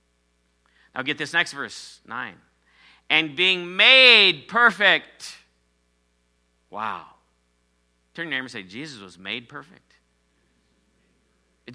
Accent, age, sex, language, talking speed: American, 50-69, male, English, 110 wpm